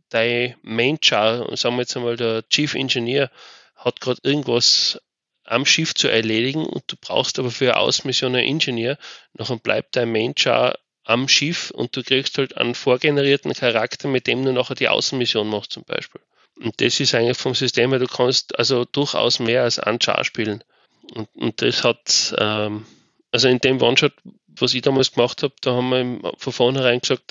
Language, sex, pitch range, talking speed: German, male, 120-135 Hz, 185 wpm